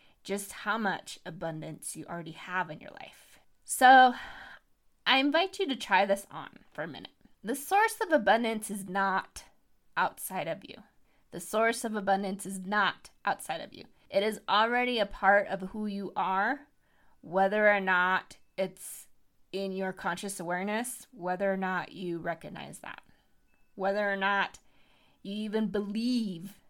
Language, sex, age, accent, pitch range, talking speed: English, female, 20-39, American, 185-230 Hz, 155 wpm